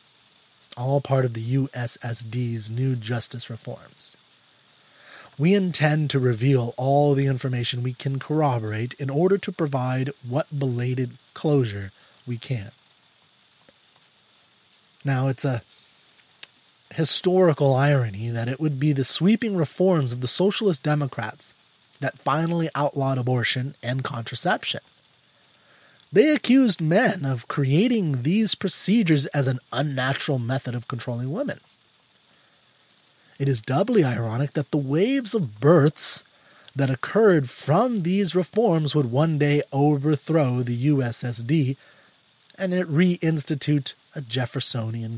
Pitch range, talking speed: 125-160 Hz, 115 wpm